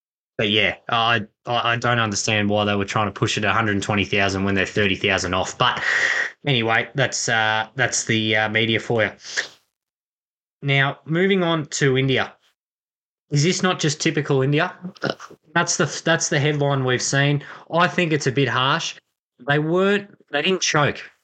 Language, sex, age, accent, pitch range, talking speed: English, male, 20-39, Australian, 115-145 Hz, 165 wpm